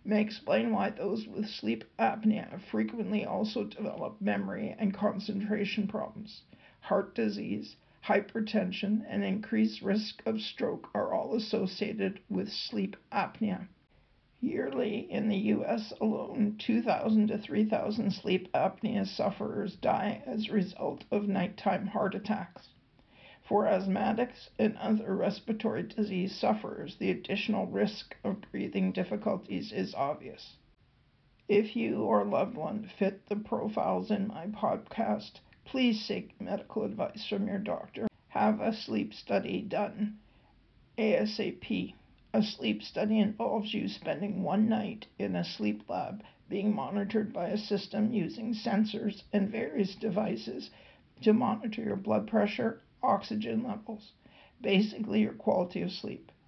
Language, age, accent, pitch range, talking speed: English, 50-69, American, 195-220 Hz, 130 wpm